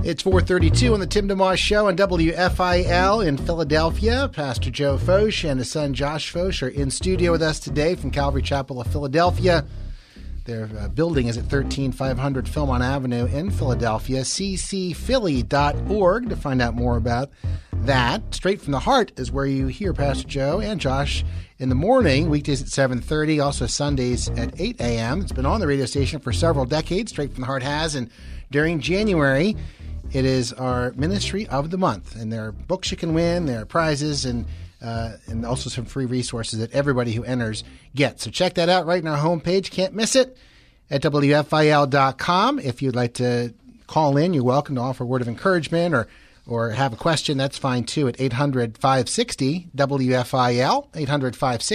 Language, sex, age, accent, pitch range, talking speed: English, male, 40-59, American, 120-160 Hz, 175 wpm